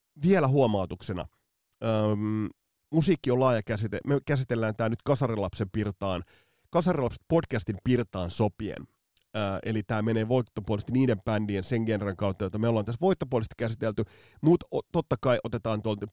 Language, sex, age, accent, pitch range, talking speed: Finnish, male, 30-49, native, 100-130 Hz, 140 wpm